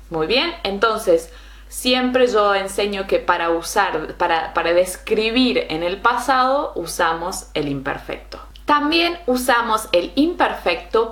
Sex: female